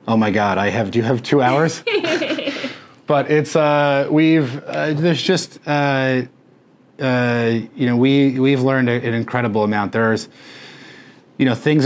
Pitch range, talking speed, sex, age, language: 110-130 Hz, 160 wpm, male, 30-49, English